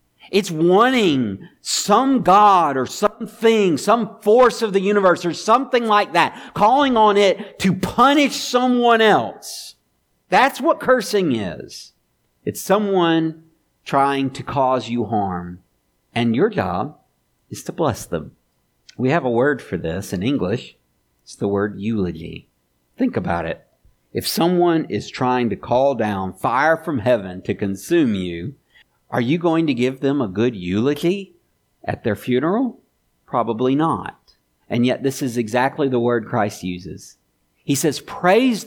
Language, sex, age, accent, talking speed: English, male, 50-69, American, 145 wpm